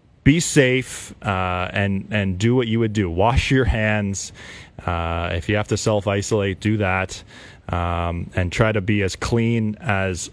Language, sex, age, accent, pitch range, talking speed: English, male, 20-39, American, 90-115 Hz, 170 wpm